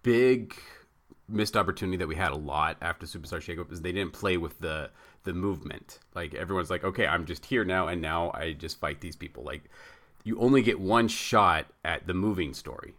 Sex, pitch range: male, 80-110 Hz